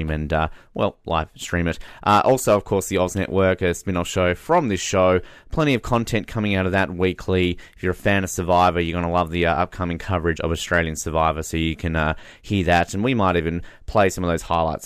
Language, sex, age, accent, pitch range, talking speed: English, male, 20-39, Australian, 85-110 Hz, 235 wpm